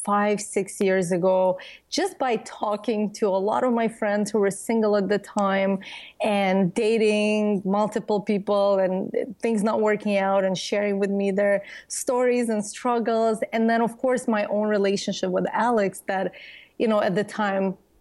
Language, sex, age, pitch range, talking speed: English, female, 30-49, 195-235 Hz, 170 wpm